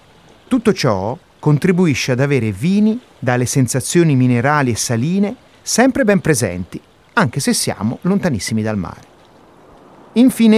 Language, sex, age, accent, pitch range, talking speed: Italian, male, 30-49, native, 120-190 Hz, 120 wpm